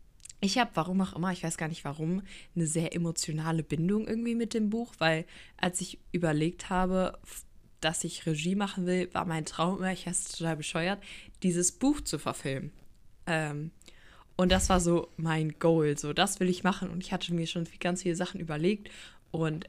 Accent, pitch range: German, 165-185 Hz